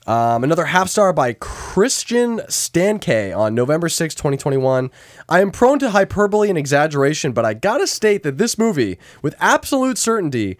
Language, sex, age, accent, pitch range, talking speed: English, male, 20-39, American, 110-175 Hz, 165 wpm